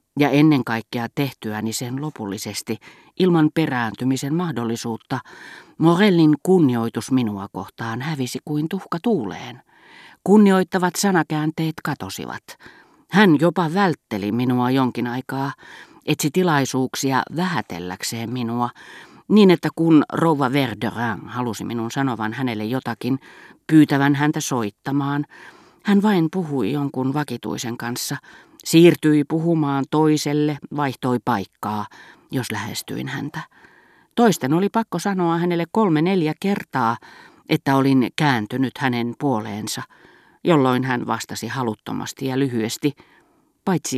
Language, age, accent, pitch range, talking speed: Finnish, 40-59, native, 120-170 Hz, 105 wpm